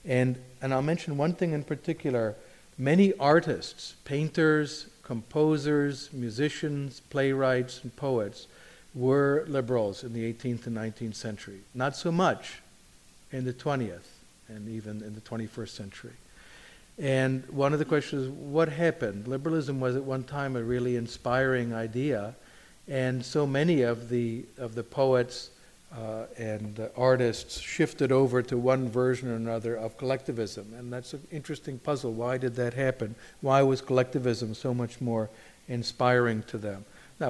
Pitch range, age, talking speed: 115-135 Hz, 50-69, 150 wpm